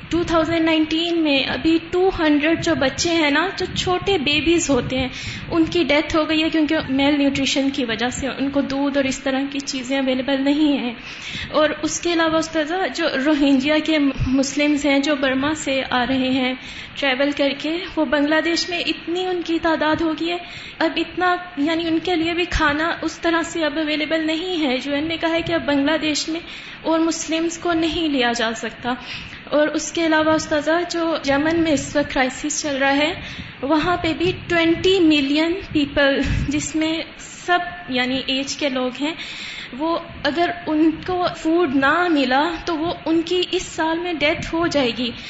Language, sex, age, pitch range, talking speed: English, female, 20-39, 285-340 Hz, 145 wpm